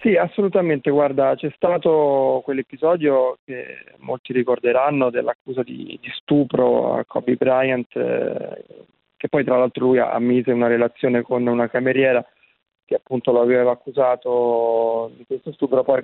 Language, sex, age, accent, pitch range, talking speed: Italian, male, 20-39, native, 120-145 Hz, 140 wpm